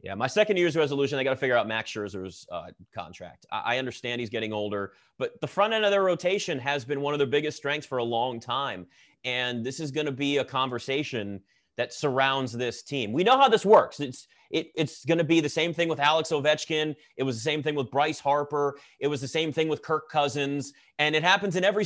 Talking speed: 240 wpm